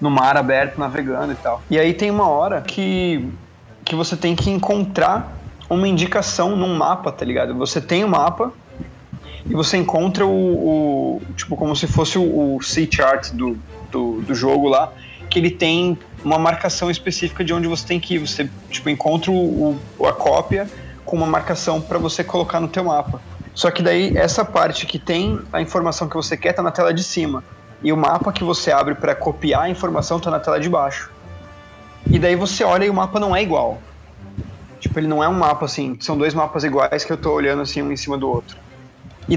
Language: Portuguese